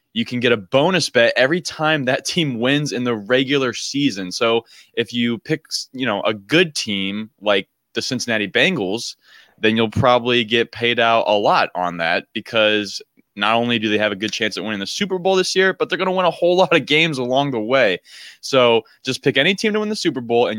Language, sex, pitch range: English, male, 105-140 Hz